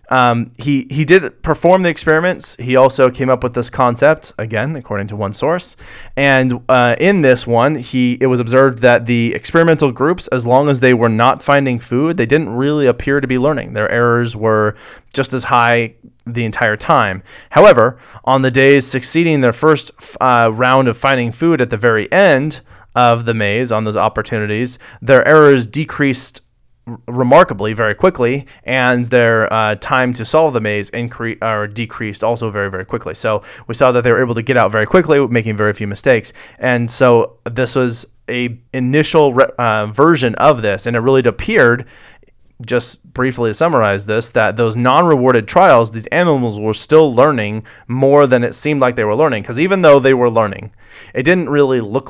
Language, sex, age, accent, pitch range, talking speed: English, male, 30-49, American, 115-140 Hz, 190 wpm